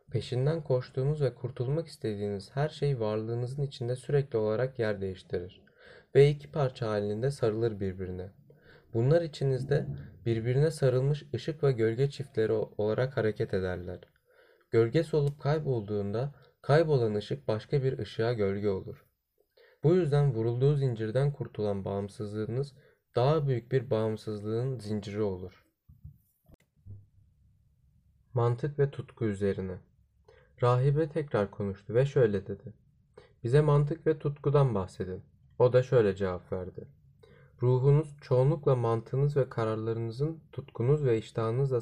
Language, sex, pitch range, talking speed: Turkish, male, 105-140 Hz, 115 wpm